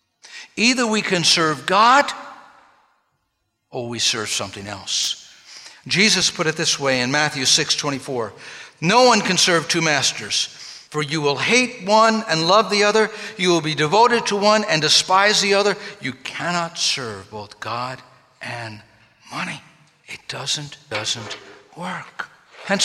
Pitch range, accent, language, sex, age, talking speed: 145-205 Hz, American, English, male, 60-79, 145 wpm